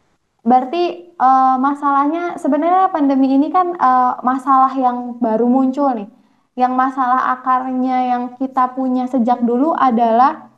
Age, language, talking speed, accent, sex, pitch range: 20-39, Indonesian, 125 wpm, native, female, 225-275 Hz